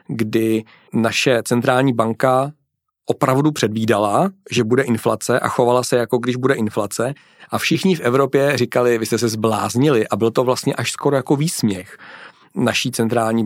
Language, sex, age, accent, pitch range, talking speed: Czech, male, 40-59, native, 115-130 Hz, 155 wpm